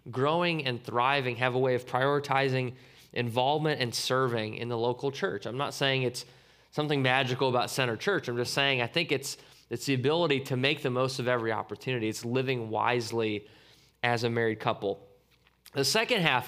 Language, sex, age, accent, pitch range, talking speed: English, male, 20-39, American, 125-155 Hz, 180 wpm